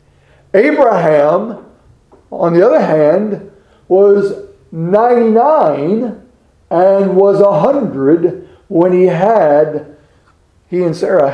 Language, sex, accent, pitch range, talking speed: English, male, American, 130-195 Hz, 90 wpm